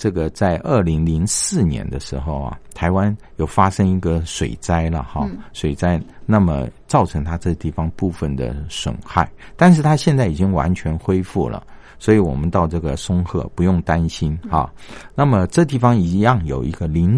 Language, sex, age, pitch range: Chinese, male, 50-69, 80-105 Hz